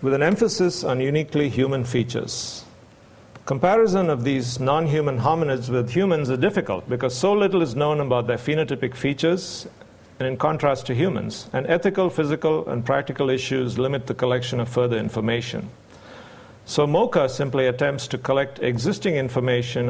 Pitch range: 120-150 Hz